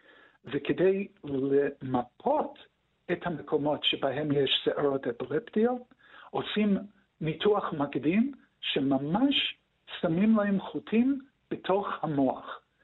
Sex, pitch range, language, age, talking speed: male, 140-195 Hz, Hebrew, 60-79, 80 wpm